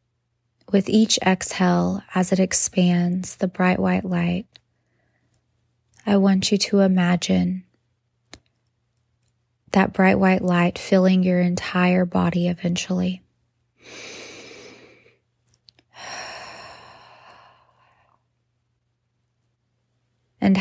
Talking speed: 75 wpm